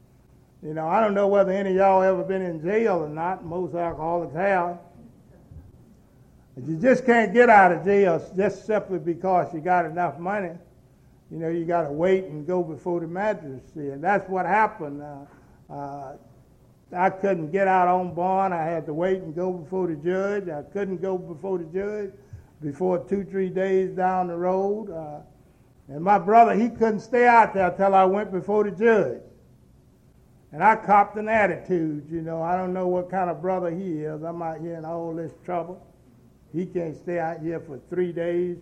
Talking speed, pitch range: 195 wpm, 165-195 Hz